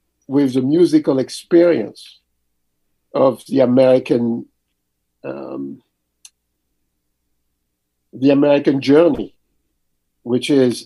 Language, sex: English, male